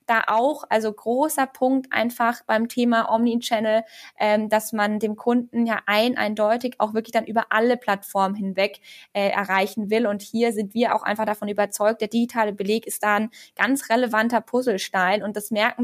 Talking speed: 180 wpm